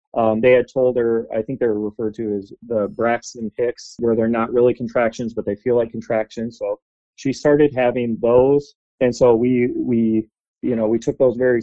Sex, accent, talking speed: male, American, 200 wpm